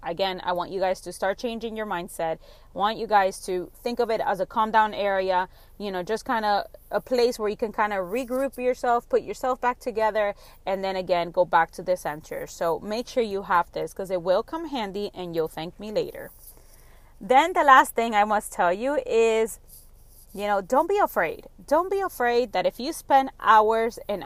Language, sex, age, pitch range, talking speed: English, female, 30-49, 190-255 Hz, 220 wpm